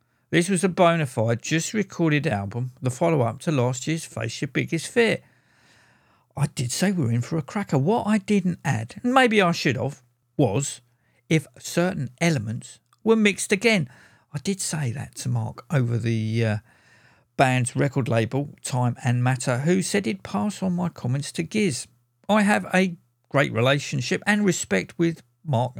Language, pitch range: English, 125-175 Hz